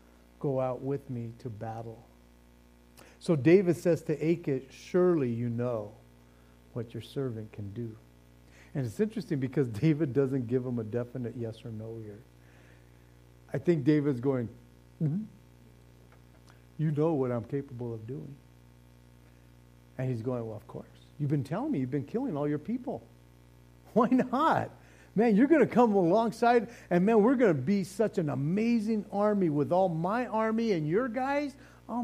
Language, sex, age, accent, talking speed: English, male, 50-69, American, 165 wpm